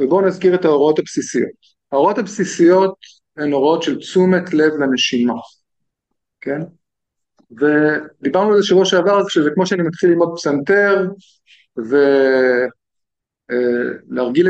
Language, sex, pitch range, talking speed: Hebrew, male, 150-195 Hz, 110 wpm